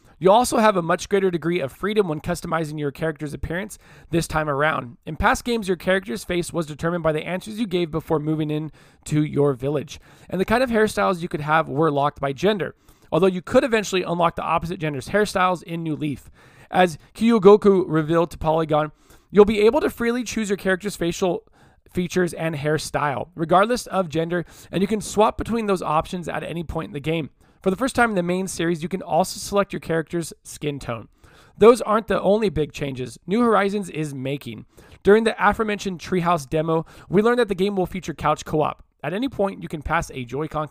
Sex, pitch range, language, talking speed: male, 155-200 Hz, English, 210 wpm